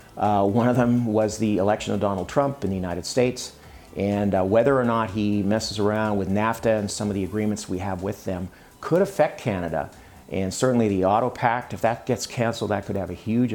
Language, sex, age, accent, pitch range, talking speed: English, male, 50-69, American, 90-110 Hz, 220 wpm